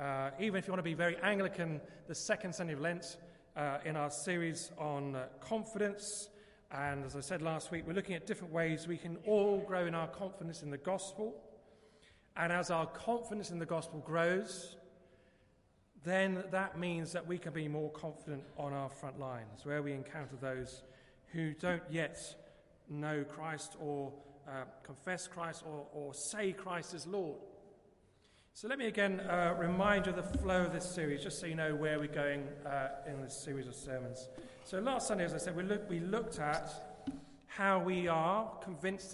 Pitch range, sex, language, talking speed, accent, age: 145-185 Hz, male, English, 190 wpm, British, 40-59